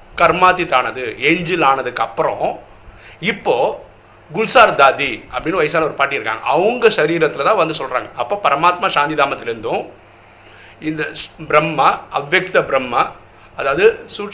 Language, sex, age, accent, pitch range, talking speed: Tamil, male, 50-69, native, 140-215 Hz, 115 wpm